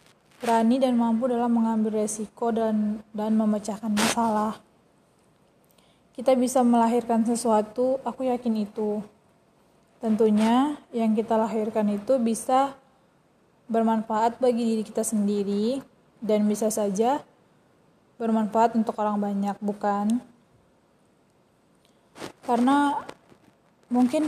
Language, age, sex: Indonesian, 20-39, female